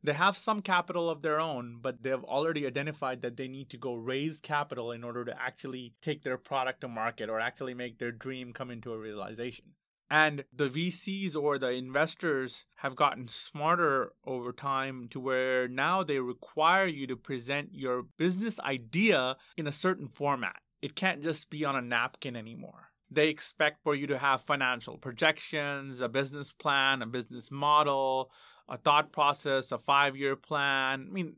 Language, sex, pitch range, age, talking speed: English, male, 130-160 Hz, 30-49, 180 wpm